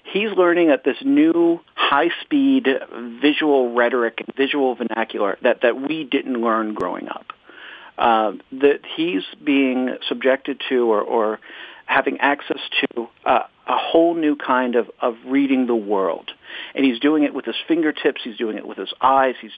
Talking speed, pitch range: 160 wpm, 125-170 Hz